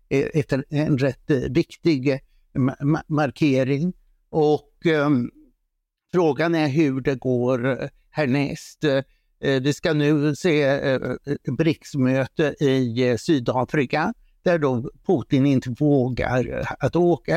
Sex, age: male, 60-79